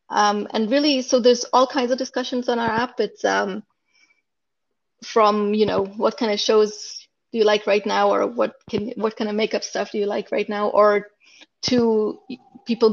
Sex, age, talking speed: female, 30-49, 195 wpm